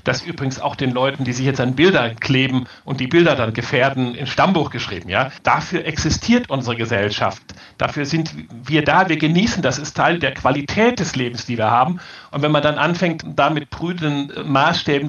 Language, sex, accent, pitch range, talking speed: German, male, German, 130-170 Hz, 190 wpm